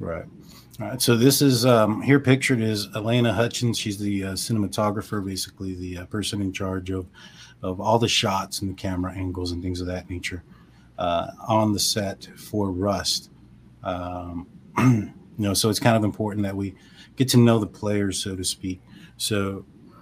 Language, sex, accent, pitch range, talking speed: English, male, American, 95-110 Hz, 185 wpm